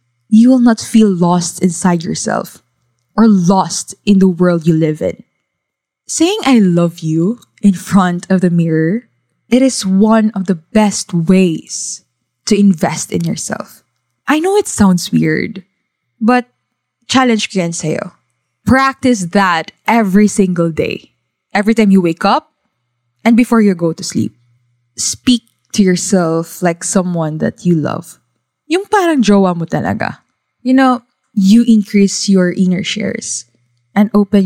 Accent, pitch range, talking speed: Filipino, 165-215 Hz, 140 wpm